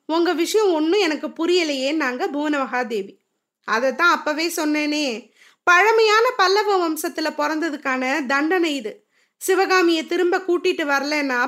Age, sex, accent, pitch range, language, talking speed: 20-39, female, native, 290-370 Hz, Tamil, 115 wpm